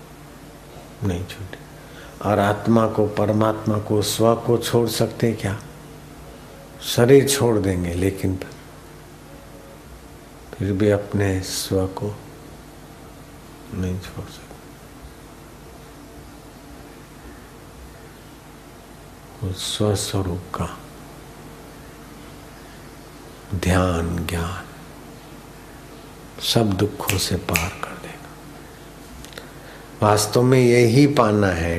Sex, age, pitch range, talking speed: male, 60-79, 95-115 Hz, 75 wpm